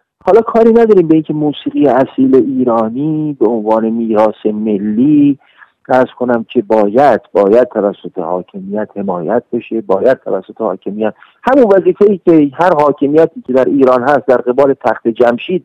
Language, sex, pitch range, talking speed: Persian, male, 105-155 Hz, 145 wpm